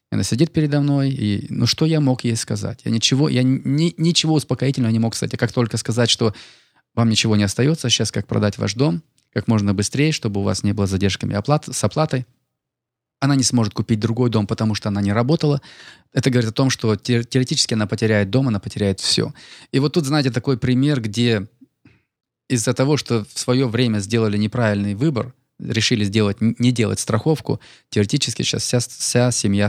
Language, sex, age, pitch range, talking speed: Russian, male, 20-39, 110-135 Hz, 190 wpm